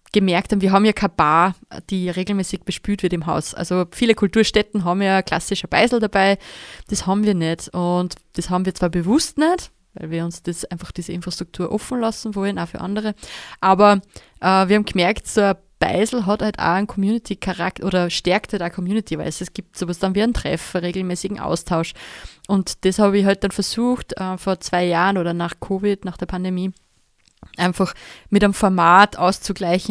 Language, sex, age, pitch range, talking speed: German, female, 20-39, 180-205 Hz, 195 wpm